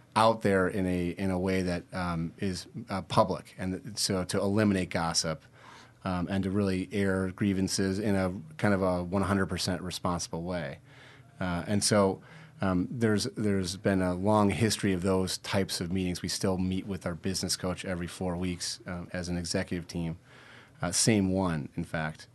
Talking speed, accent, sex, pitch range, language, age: 180 wpm, American, male, 90-110 Hz, English, 30-49